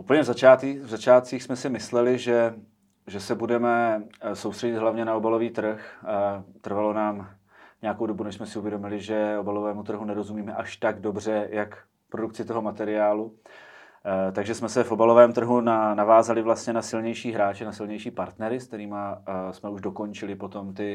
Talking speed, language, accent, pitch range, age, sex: 160 wpm, Czech, native, 105-120 Hz, 30-49, male